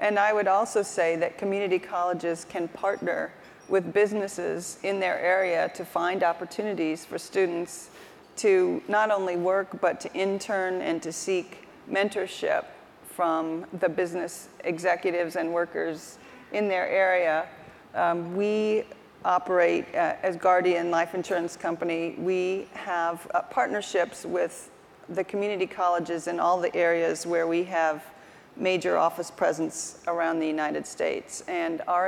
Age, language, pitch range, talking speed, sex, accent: 40-59, English, 170-200 Hz, 135 wpm, female, American